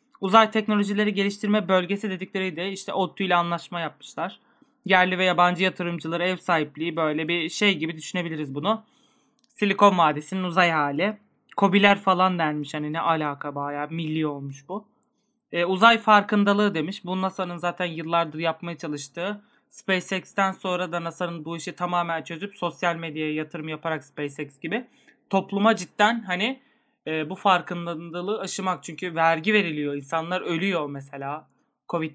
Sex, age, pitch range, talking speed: male, 30-49, 155-200 Hz, 140 wpm